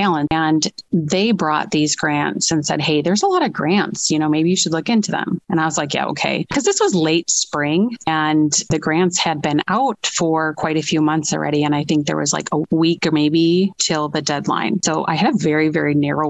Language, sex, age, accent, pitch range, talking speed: English, female, 30-49, American, 150-170 Hz, 235 wpm